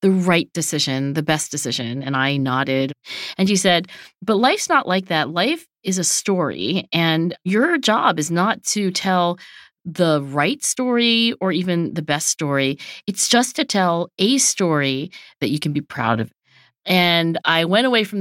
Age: 40-59